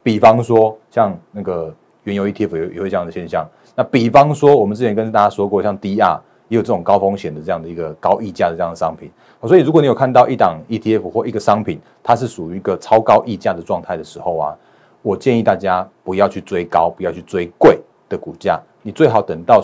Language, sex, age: Chinese, male, 30-49